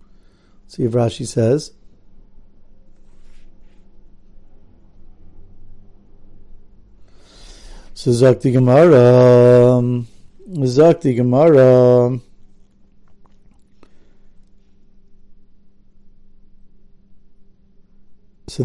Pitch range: 120-150 Hz